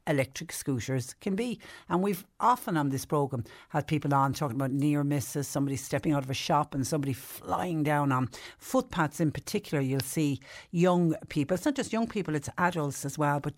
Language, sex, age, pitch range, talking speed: English, female, 60-79, 140-175 Hz, 200 wpm